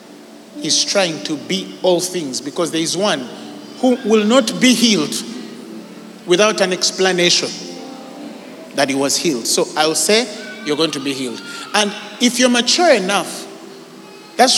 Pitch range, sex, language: 185-275 Hz, male, English